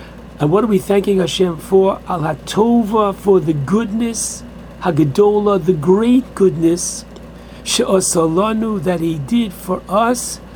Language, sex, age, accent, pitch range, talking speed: English, male, 60-79, American, 170-205 Hz, 120 wpm